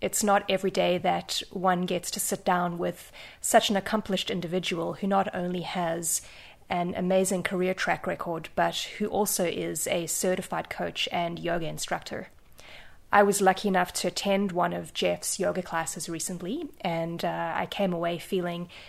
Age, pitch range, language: 20-39, 175-200 Hz, English